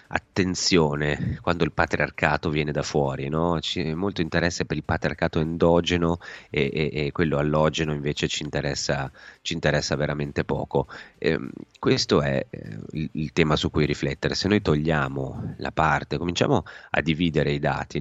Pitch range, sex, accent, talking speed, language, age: 70-80 Hz, male, native, 150 wpm, Italian, 30-49